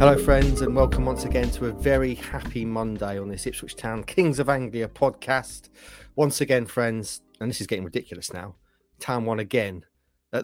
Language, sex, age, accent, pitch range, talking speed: English, male, 30-49, British, 100-130 Hz, 185 wpm